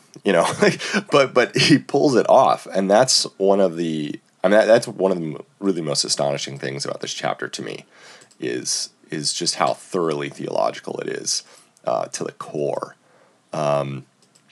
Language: English